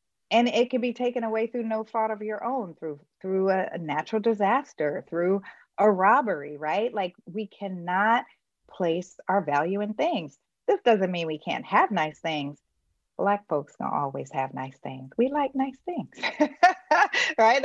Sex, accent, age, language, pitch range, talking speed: female, American, 30-49, English, 155-220 Hz, 165 wpm